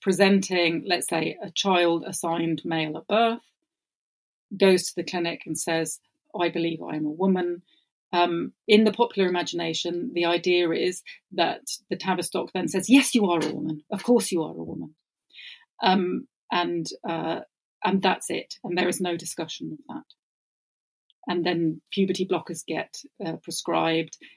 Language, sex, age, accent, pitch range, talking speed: English, female, 40-59, British, 165-210 Hz, 160 wpm